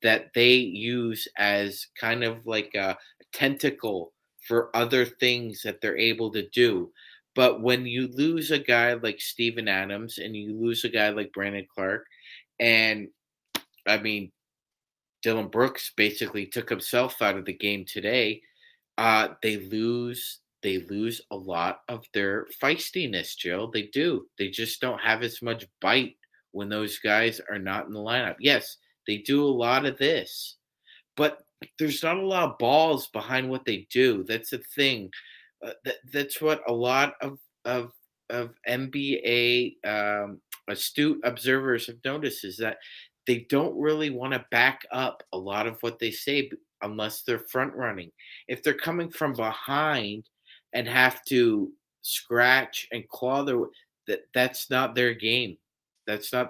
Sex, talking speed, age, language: male, 160 wpm, 30-49, English